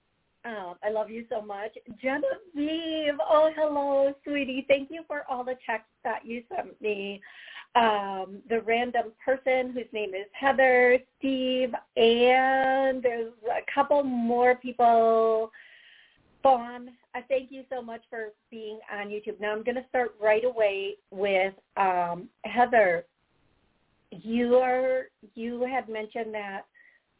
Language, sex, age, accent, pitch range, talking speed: English, female, 40-59, American, 205-255 Hz, 135 wpm